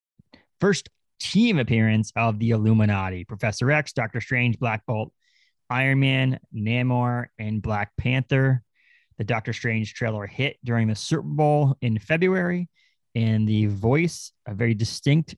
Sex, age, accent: male, 30-49, American